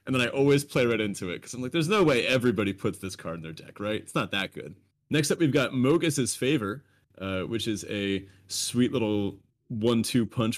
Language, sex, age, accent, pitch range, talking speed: English, male, 30-49, American, 100-130 Hz, 225 wpm